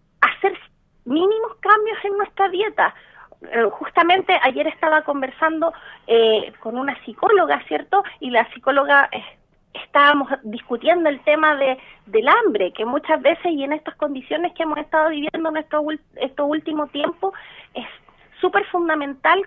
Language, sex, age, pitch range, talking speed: Spanish, female, 40-59, 265-335 Hz, 140 wpm